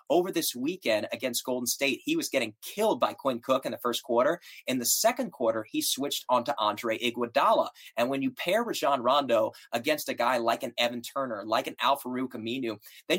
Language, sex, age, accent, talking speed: English, male, 20-39, American, 205 wpm